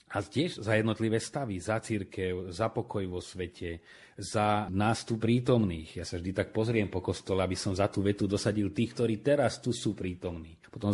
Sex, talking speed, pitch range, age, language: male, 185 wpm, 95-110 Hz, 30-49, Slovak